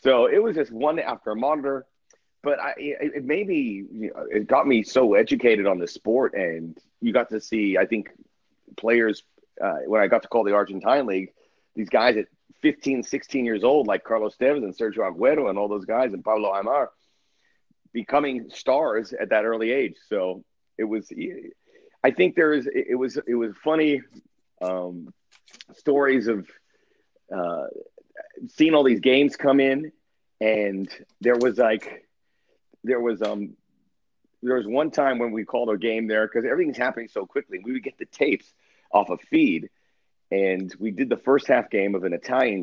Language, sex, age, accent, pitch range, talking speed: English, male, 40-59, American, 105-155 Hz, 180 wpm